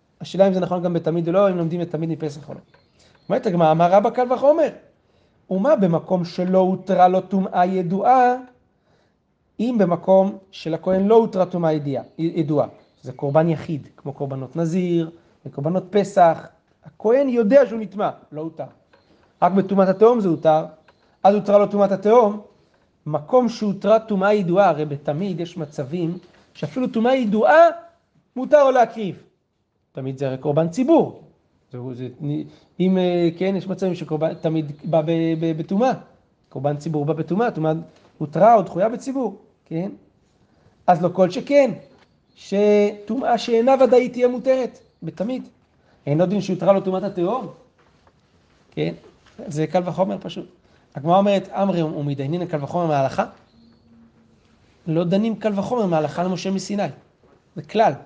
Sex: male